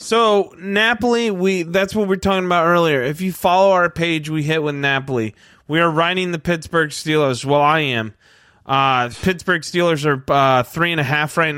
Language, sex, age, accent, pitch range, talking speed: English, male, 20-39, American, 140-190 Hz, 200 wpm